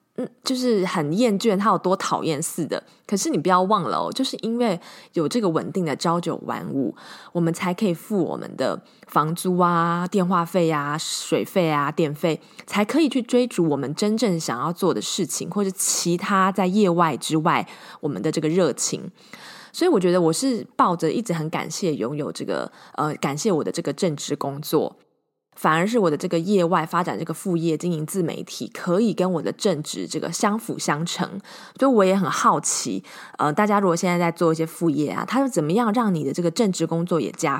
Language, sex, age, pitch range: Chinese, female, 20-39, 160-205 Hz